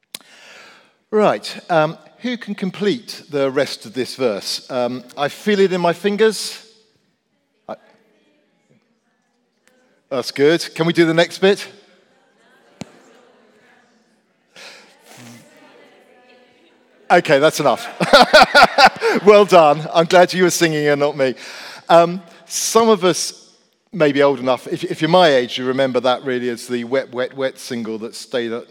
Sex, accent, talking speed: male, British, 130 wpm